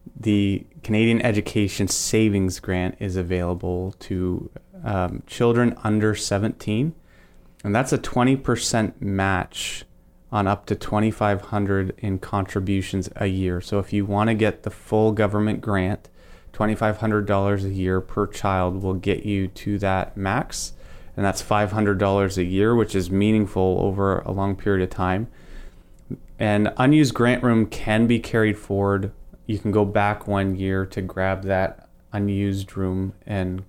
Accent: American